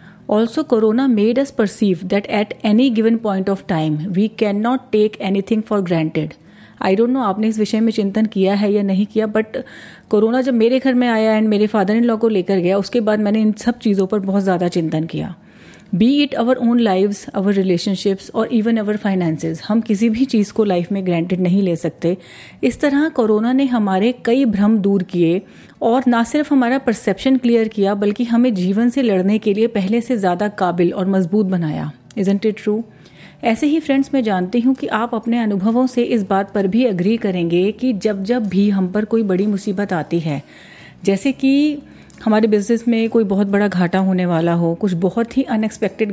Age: 30-49